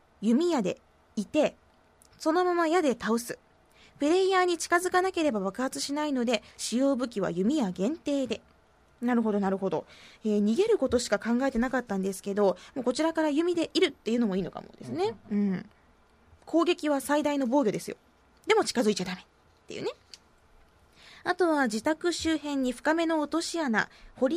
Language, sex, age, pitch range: Japanese, female, 20-39, 215-320 Hz